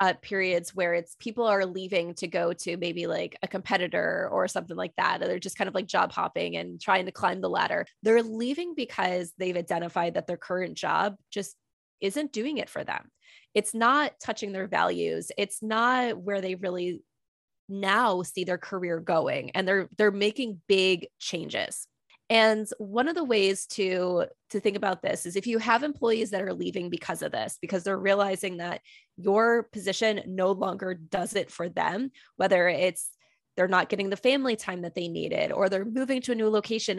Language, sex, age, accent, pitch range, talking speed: English, female, 20-39, American, 185-225 Hz, 195 wpm